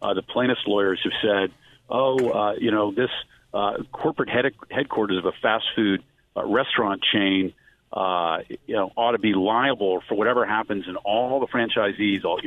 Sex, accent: male, American